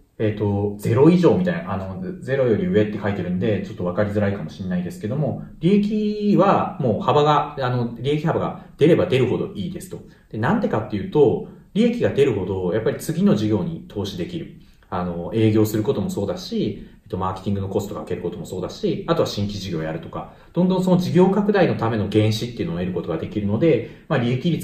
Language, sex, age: Japanese, male, 40-59